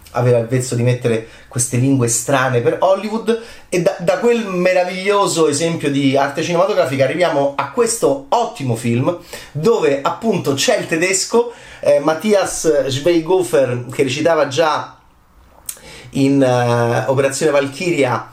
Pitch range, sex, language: 120-160 Hz, male, Italian